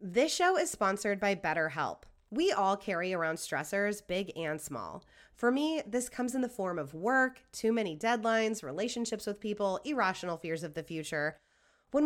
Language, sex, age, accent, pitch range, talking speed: English, female, 20-39, American, 175-240 Hz, 180 wpm